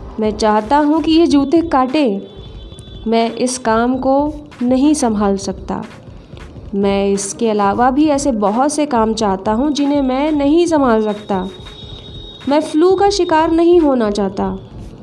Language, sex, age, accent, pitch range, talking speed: Hindi, female, 20-39, native, 215-305 Hz, 145 wpm